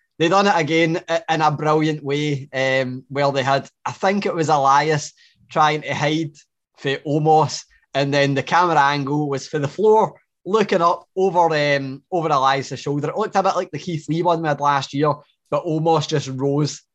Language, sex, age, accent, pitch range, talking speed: English, male, 20-39, British, 130-160 Hz, 195 wpm